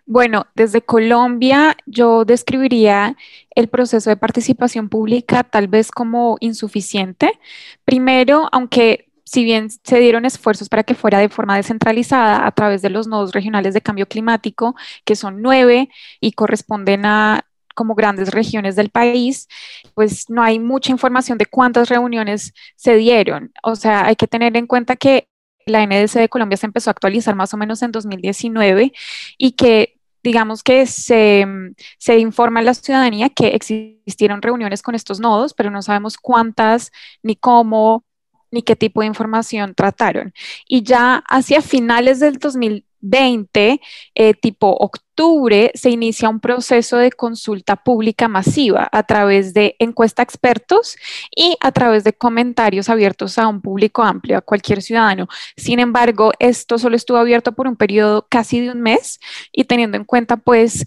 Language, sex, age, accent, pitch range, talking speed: Spanish, female, 10-29, Colombian, 215-245 Hz, 160 wpm